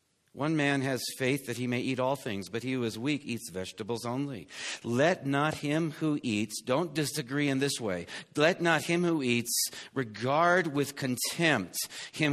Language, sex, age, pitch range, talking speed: English, male, 50-69, 125-160 Hz, 180 wpm